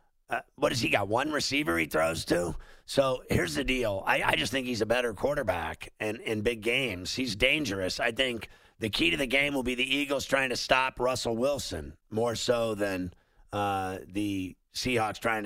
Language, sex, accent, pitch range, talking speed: English, male, American, 100-125 Hz, 200 wpm